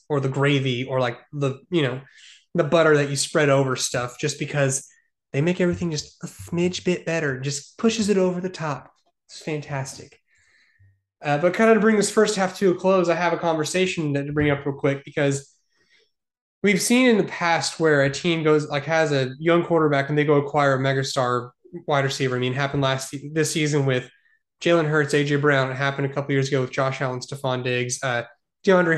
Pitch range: 140-170 Hz